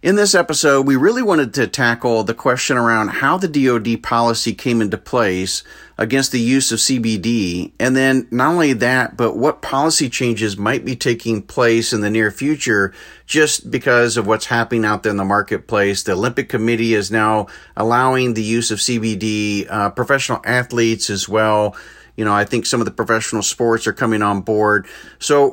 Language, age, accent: English, 40-59, American